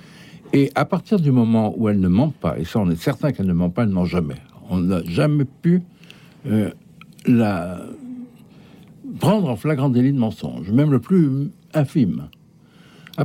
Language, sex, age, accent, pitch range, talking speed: French, male, 60-79, French, 100-170 Hz, 180 wpm